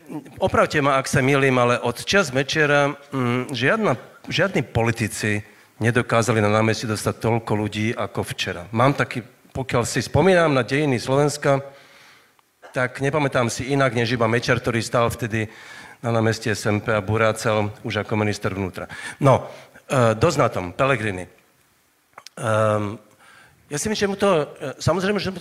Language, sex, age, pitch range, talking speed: Slovak, male, 40-59, 110-140 Hz, 150 wpm